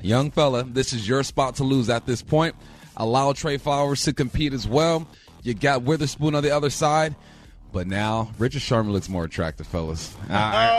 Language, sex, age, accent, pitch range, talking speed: English, male, 30-49, American, 115-155 Hz, 190 wpm